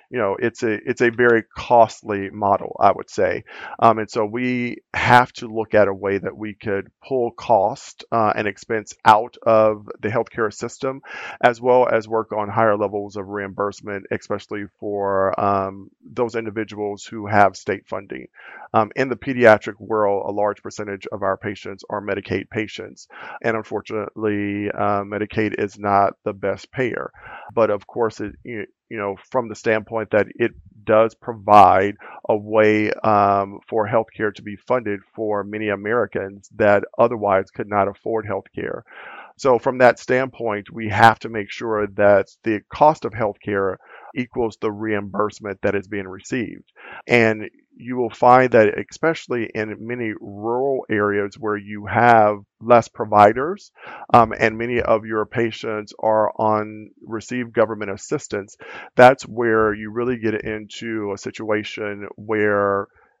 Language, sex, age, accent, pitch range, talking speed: English, male, 40-59, American, 100-115 Hz, 155 wpm